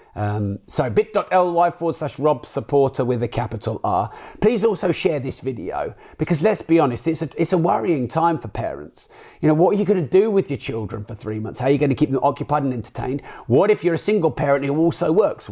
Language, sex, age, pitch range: English, male, 40-59, 120-155 Hz